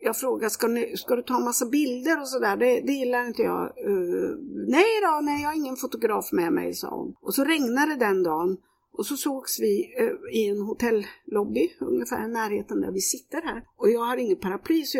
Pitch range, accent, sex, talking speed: 210-355 Hz, native, female, 220 wpm